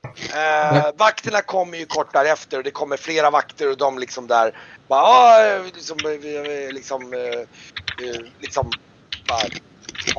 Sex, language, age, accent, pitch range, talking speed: male, Swedish, 30-49, native, 120-160 Hz, 135 wpm